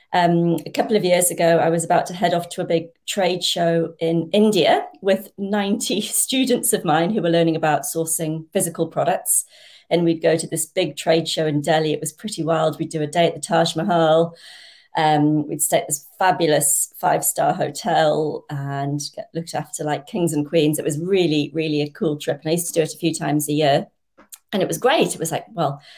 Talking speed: 220 wpm